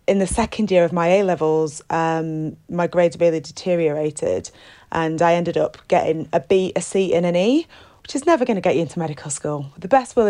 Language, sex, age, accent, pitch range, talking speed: English, female, 30-49, British, 165-195 Hz, 220 wpm